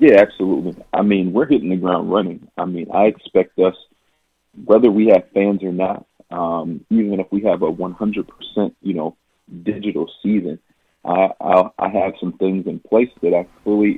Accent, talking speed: American, 180 wpm